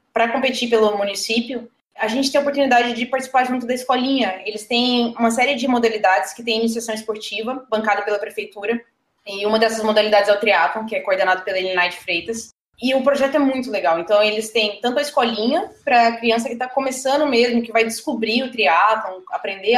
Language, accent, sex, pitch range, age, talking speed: Portuguese, Brazilian, female, 210-260 Hz, 20-39, 195 wpm